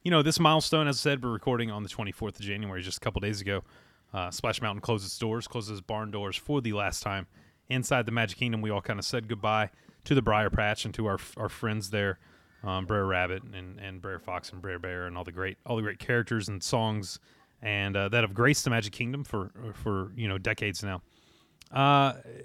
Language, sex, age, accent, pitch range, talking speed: English, male, 30-49, American, 100-135 Hz, 230 wpm